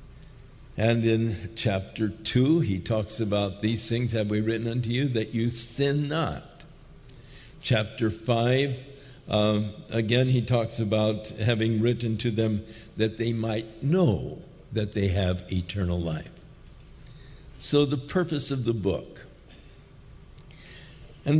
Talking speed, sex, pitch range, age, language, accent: 125 wpm, male, 115-150 Hz, 60-79, English, American